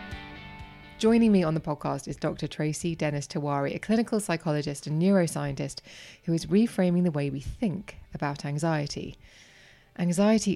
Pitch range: 150-200 Hz